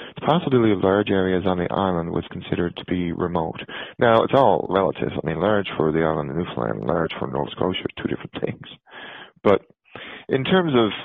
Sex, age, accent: male, 40-59, American